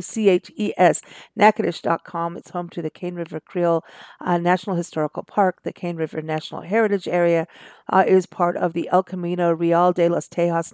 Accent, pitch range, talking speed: American, 175-205 Hz, 170 wpm